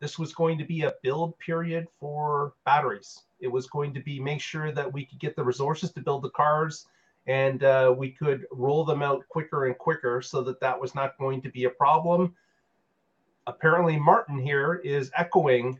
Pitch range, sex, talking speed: 130-160 Hz, male, 200 wpm